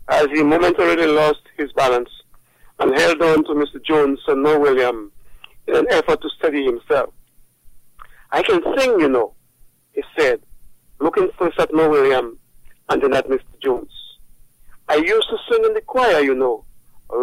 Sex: male